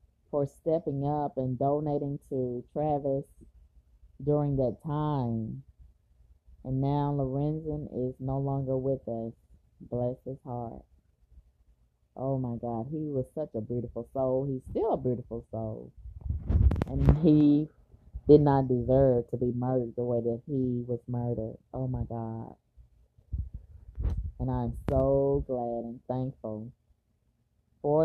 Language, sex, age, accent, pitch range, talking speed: English, female, 20-39, American, 110-135 Hz, 125 wpm